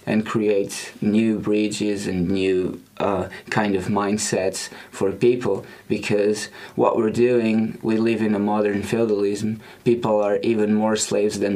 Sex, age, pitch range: male, 20-39, 100-120 Hz